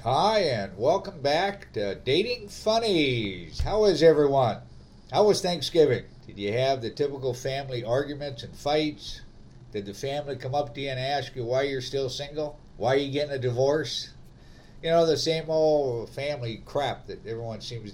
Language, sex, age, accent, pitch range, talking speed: English, male, 50-69, American, 115-150 Hz, 175 wpm